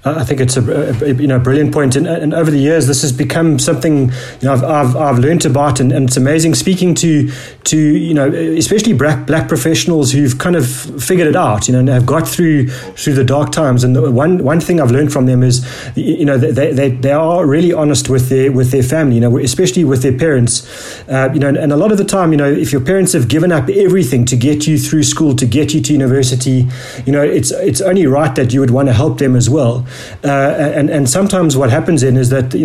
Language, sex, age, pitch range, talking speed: English, male, 30-49, 130-155 Hz, 250 wpm